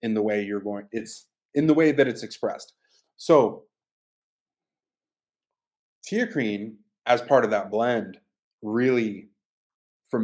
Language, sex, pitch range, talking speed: English, male, 105-130 Hz, 130 wpm